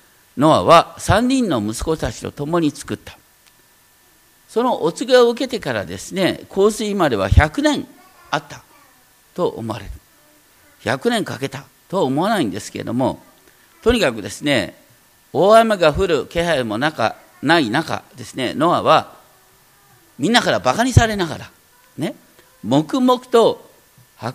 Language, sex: Japanese, male